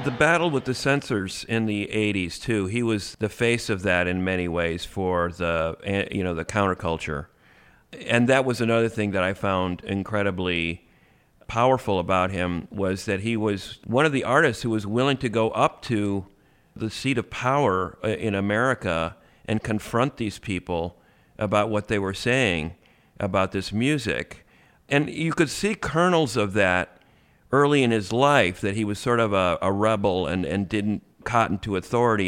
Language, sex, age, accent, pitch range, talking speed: English, male, 50-69, American, 95-120 Hz, 175 wpm